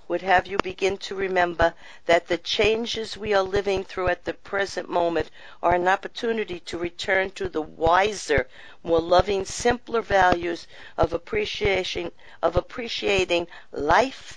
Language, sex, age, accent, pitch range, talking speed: English, female, 50-69, American, 170-200 Hz, 140 wpm